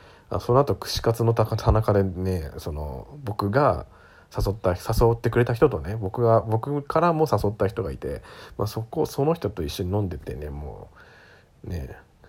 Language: Japanese